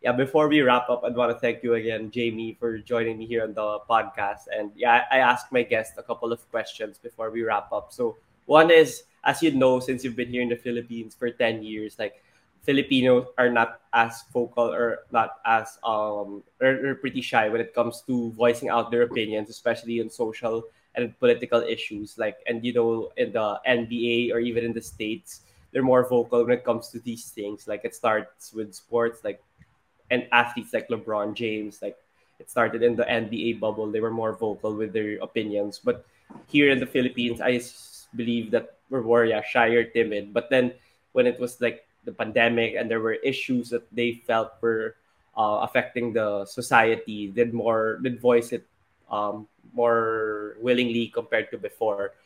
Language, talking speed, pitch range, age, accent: Filipino, 190 wpm, 110-125 Hz, 20-39, native